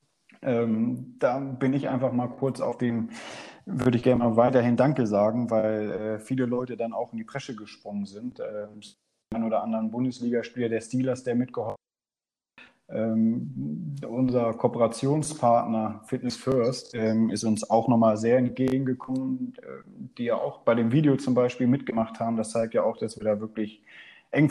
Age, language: 30-49, English